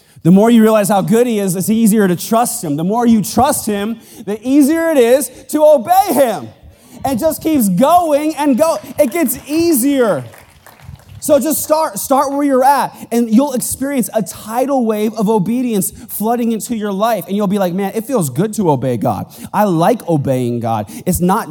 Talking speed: 195 wpm